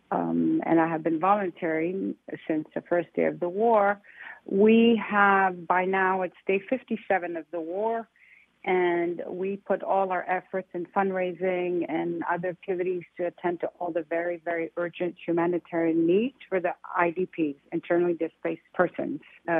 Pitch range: 170-200 Hz